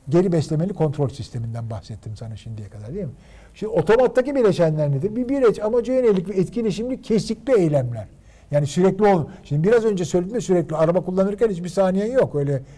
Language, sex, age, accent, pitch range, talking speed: Turkish, male, 50-69, native, 140-205 Hz, 170 wpm